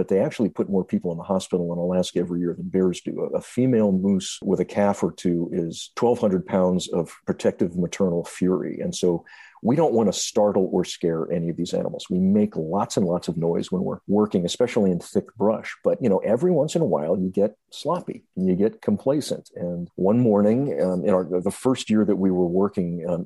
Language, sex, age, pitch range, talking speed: English, male, 50-69, 90-105 Hz, 225 wpm